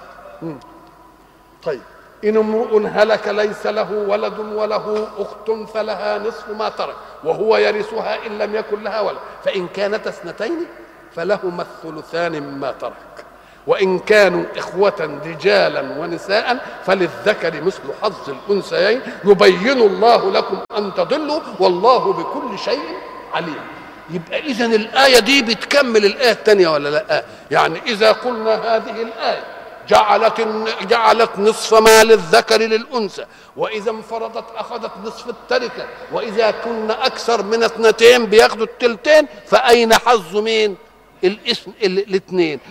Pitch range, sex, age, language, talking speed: 200-235 Hz, male, 50-69, Arabic, 110 wpm